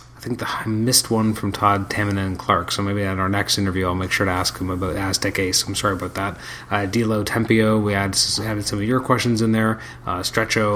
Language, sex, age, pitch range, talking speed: English, male, 30-49, 100-115 Hz, 245 wpm